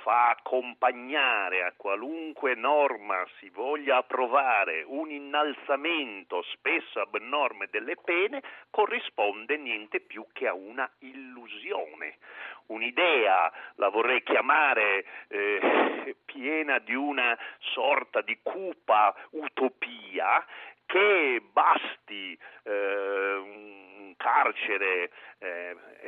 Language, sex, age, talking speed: Italian, male, 50-69, 85 wpm